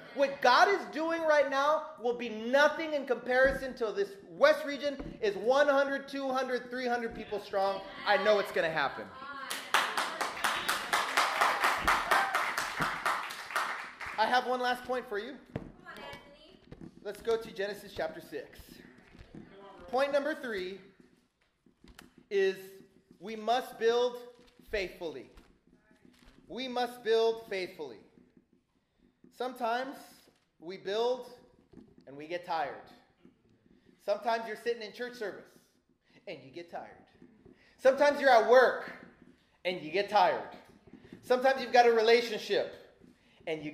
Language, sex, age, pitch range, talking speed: English, male, 30-49, 205-275 Hz, 115 wpm